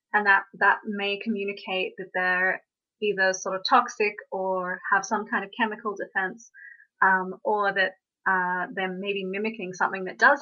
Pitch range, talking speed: 190-245 Hz, 160 wpm